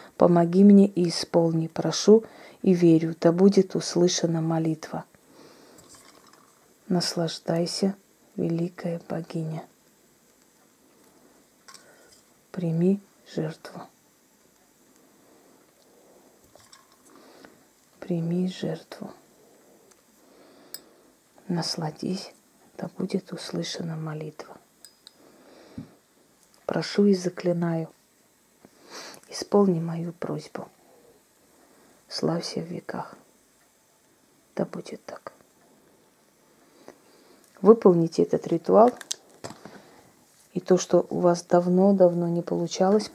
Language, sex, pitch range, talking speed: Russian, female, 170-195 Hz, 65 wpm